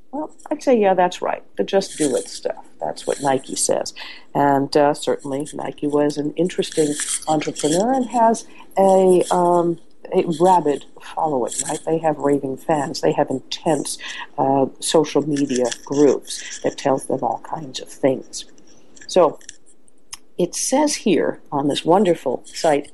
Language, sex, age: English, female, 50-69